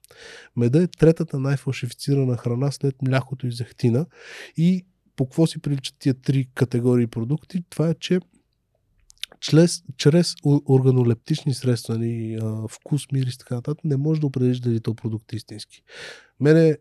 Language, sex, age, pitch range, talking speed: Bulgarian, male, 20-39, 120-150 Hz, 145 wpm